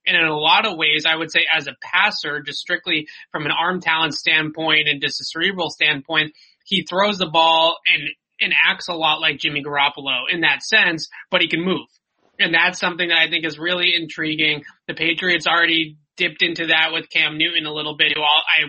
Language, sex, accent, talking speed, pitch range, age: English, male, American, 210 wpm, 150-170 Hz, 20-39